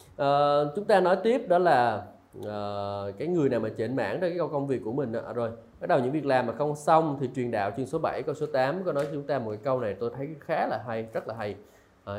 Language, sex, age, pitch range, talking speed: Vietnamese, male, 20-39, 110-150 Hz, 270 wpm